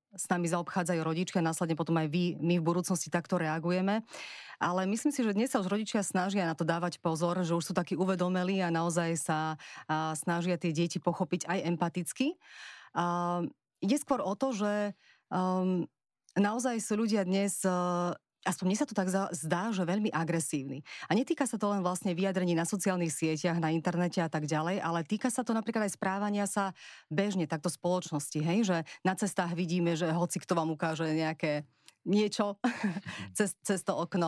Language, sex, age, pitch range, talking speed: Slovak, female, 30-49, 170-200 Hz, 180 wpm